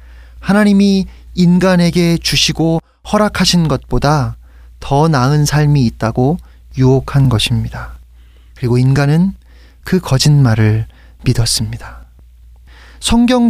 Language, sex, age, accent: Korean, male, 30-49, native